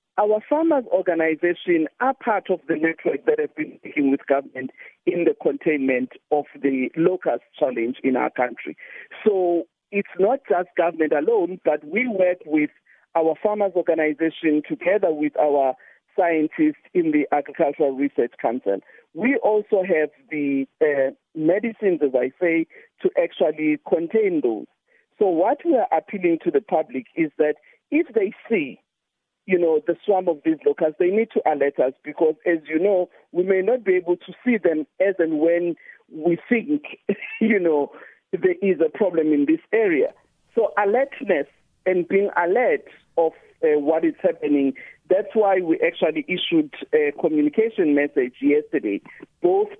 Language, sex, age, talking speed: English, male, 50-69, 155 wpm